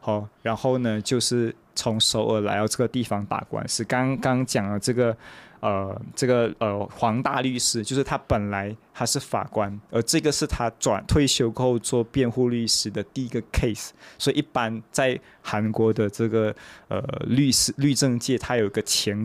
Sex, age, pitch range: male, 20-39, 115-145 Hz